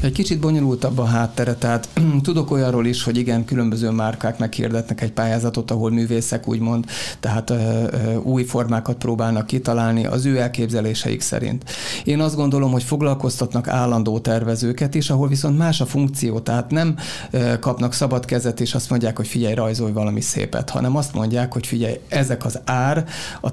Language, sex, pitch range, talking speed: Hungarian, male, 115-130 Hz, 170 wpm